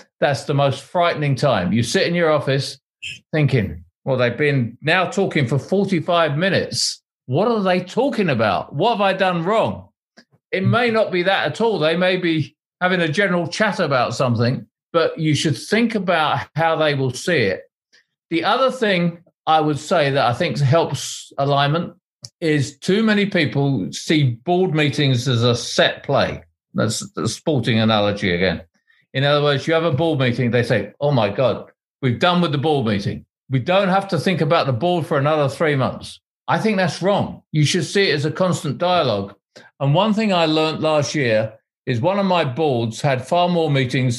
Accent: British